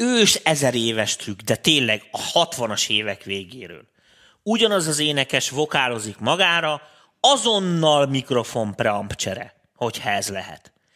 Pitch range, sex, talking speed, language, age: 120-160 Hz, male, 115 wpm, Hungarian, 30-49